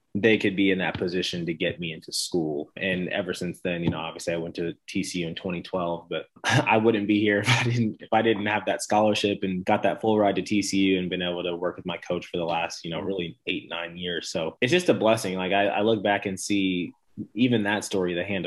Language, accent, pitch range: English, American, 90-105 Hz